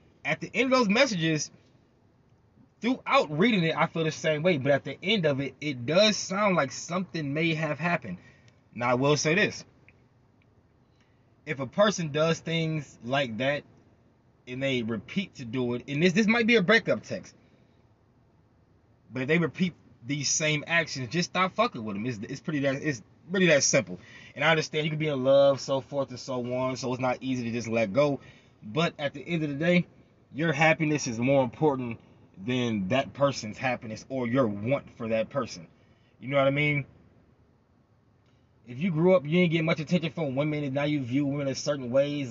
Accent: American